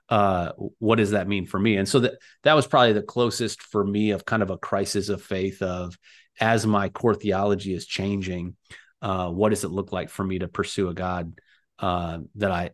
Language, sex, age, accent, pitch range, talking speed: English, male, 30-49, American, 100-115 Hz, 215 wpm